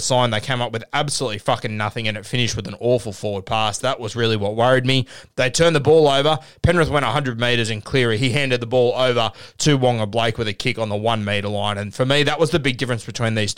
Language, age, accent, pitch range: English, 20-39, Australian, 115-145 Hz